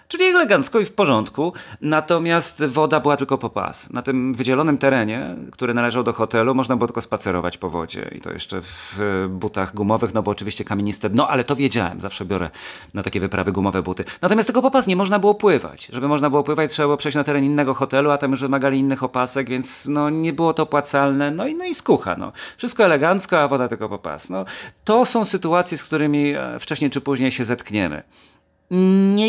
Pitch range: 115-150 Hz